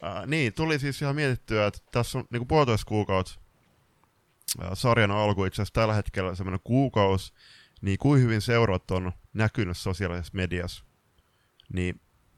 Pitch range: 90-110 Hz